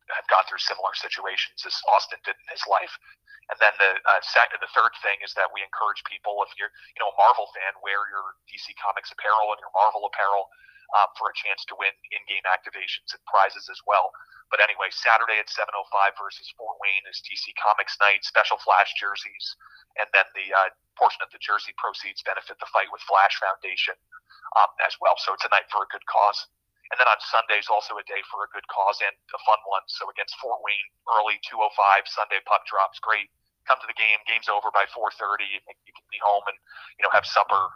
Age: 30-49